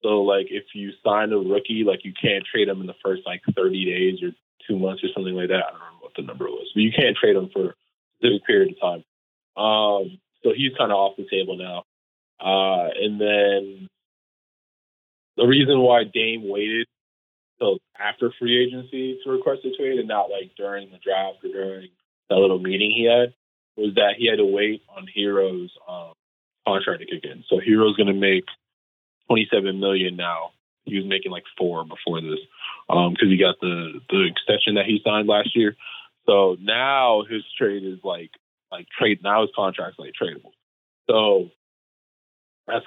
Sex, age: male, 20-39